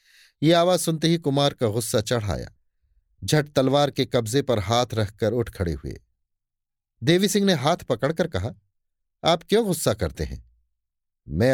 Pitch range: 105-150 Hz